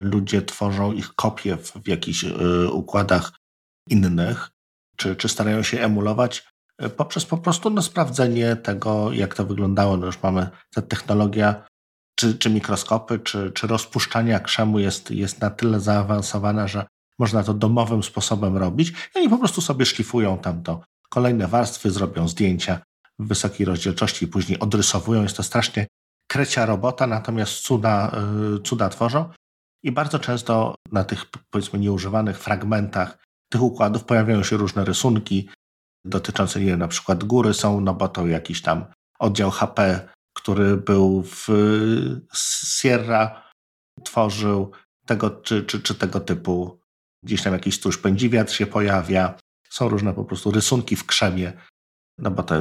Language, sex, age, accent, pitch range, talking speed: Polish, male, 50-69, native, 95-110 Hz, 140 wpm